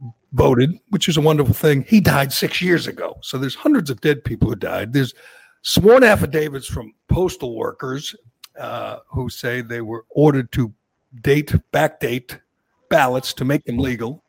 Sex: male